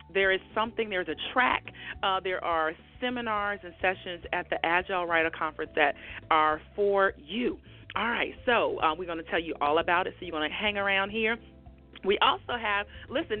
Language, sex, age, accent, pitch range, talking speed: English, female, 40-59, American, 185-240 Hz, 195 wpm